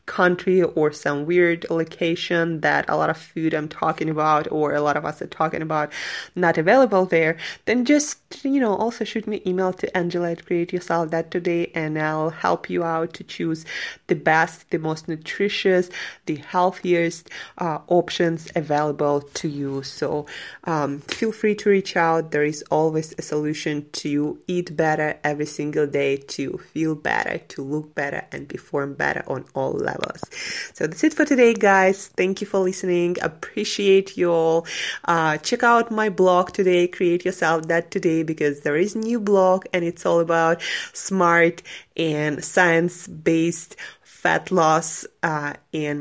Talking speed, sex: 170 wpm, female